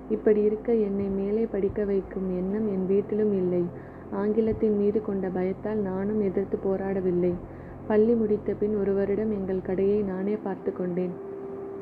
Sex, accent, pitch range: female, native, 190-210 Hz